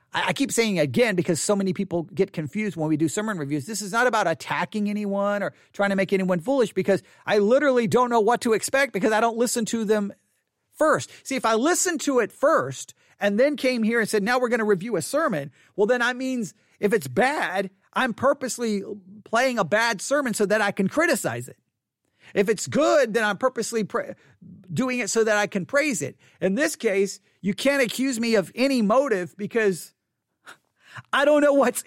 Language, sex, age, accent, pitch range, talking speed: English, male, 40-59, American, 190-235 Hz, 205 wpm